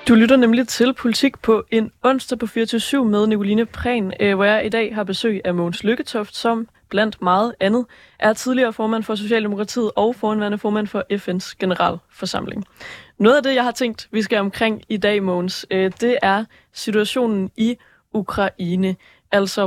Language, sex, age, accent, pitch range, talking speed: Danish, female, 20-39, native, 190-230 Hz, 170 wpm